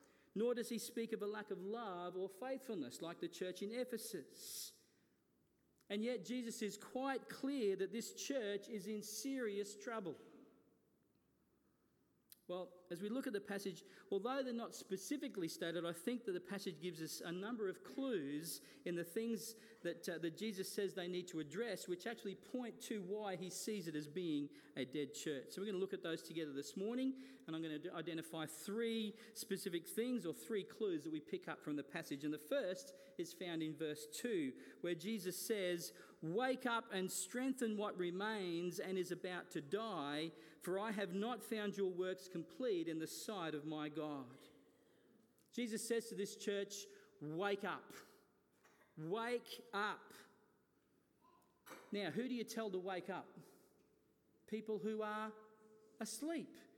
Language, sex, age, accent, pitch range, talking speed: English, male, 40-59, Australian, 180-235 Hz, 170 wpm